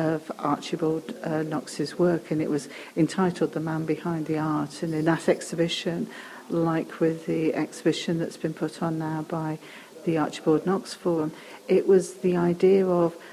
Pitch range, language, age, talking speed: 160-185 Hz, English, 50-69, 165 wpm